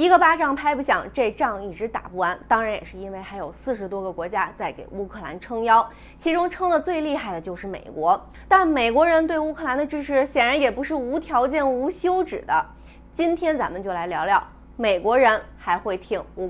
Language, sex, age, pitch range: Chinese, female, 20-39, 185-295 Hz